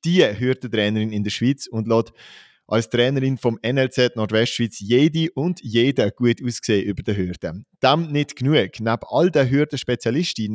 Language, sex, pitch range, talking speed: German, male, 110-140 Hz, 160 wpm